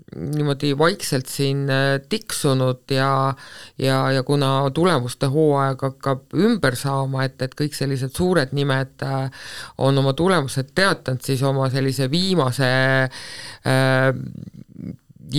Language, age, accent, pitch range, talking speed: English, 50-69, Finnish, 125-150 Hz, 110 wpm